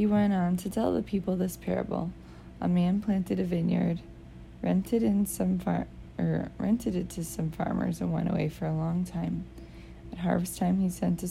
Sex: female